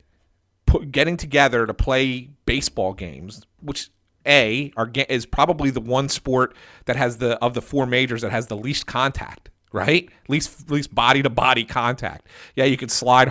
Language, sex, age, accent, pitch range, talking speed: English, male, 40-59, American, 110-150 Hz, 165 wpm